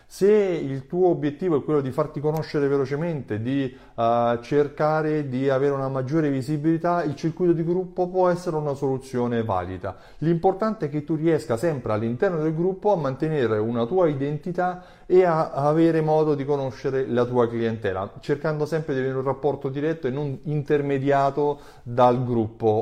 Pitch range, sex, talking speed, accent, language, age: 115-155 Hz, male, 165 wpm, native, Italian, 30-49